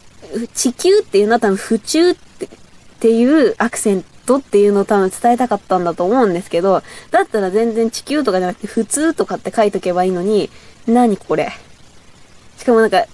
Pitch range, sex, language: 190-260 Hz, female, Japanese